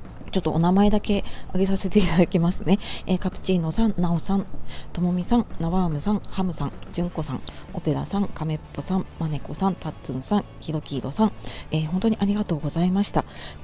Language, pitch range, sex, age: Japanese, 155-200 Hz, female, 40-59